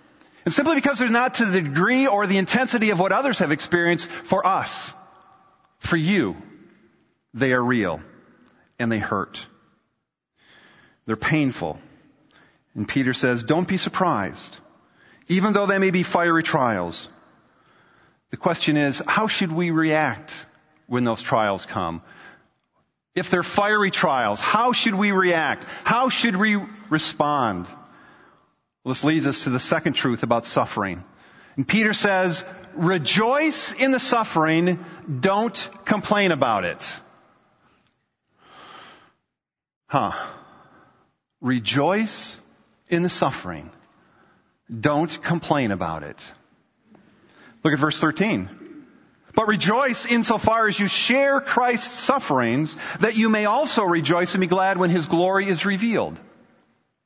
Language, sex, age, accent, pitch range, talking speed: English, male, 40-59, American, 150-215 Hz, 125 wpm